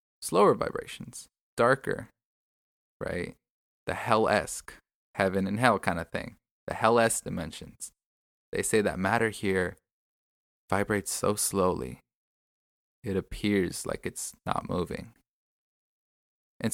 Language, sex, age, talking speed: English, male, 20-39, 110 wpm